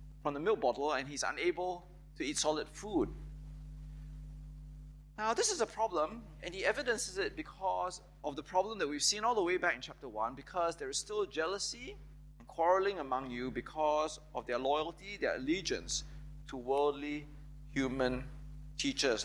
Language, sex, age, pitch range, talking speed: English, male, 30-49, 150-180 Hz, 165 wpm